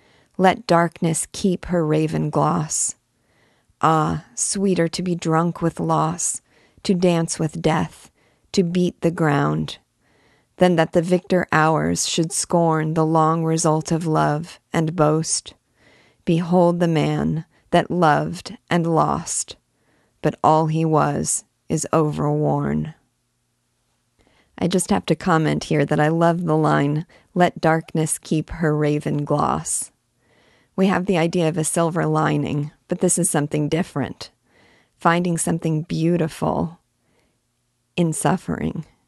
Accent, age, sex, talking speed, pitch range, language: American, 40-59, female, 125 wpm, 140-170 Hz, English